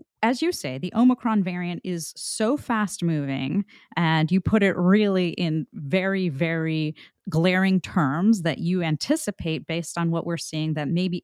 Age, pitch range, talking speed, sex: 30-49, 160-205 Hz, 160 wpm, female